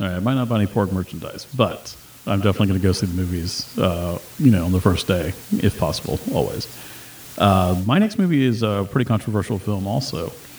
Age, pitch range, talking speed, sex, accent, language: 40-59, 95-120 Hz, 210 wpm, male, American, English